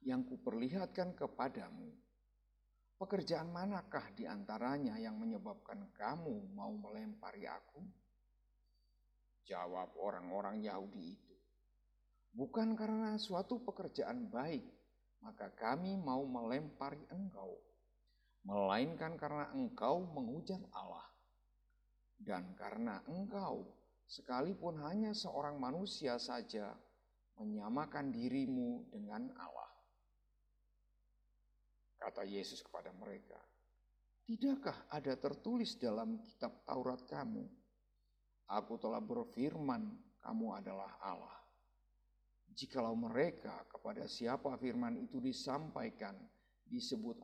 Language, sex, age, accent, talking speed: Indonesian, male, 50-69, native, 85 wpm